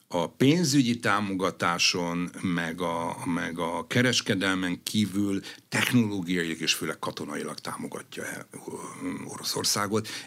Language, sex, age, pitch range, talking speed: Hungarian, male, 60-79, 85-120 Hz, 90 wpm